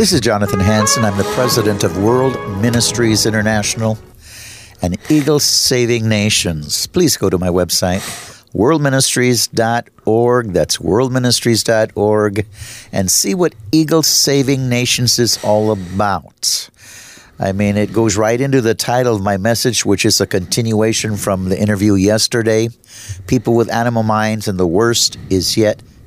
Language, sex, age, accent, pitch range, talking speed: English, male, 50-69, American, 105-125 Hz, 140 wpm